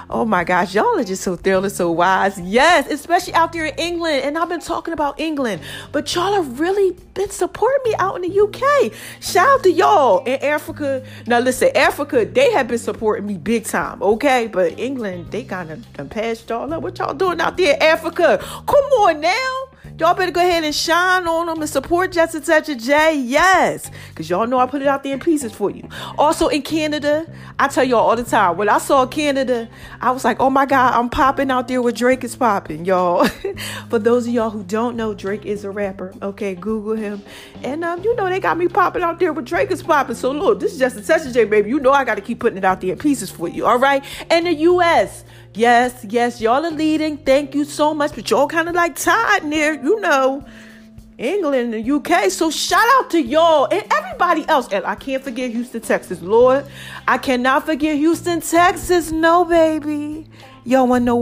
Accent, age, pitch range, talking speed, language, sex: American, 40-59, 230-330 Hz, 220 wpm, English, female